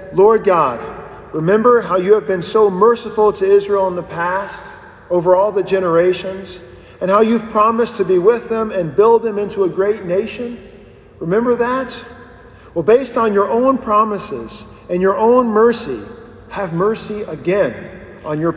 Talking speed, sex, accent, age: 160 wpm, male, American, 50-69